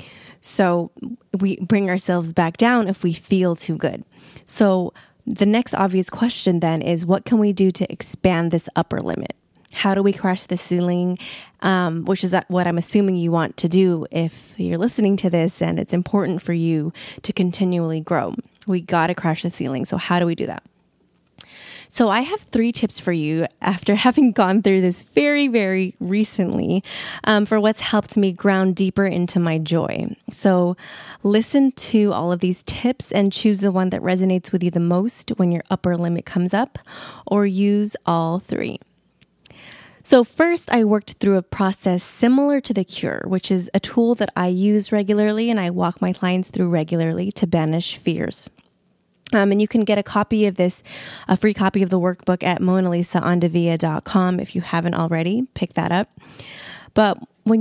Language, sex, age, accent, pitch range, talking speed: English, female, 20-39, American, 175-210 Hz, 180 wpm